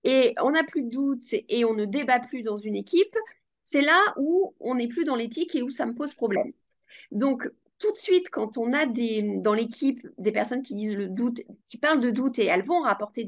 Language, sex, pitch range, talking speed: French, female, 230-325 Hz, 235 wpm